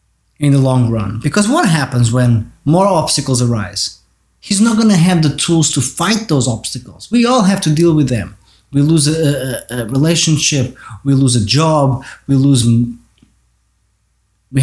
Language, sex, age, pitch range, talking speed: English, male, 30-49, 110-160 Hz, 175 wpm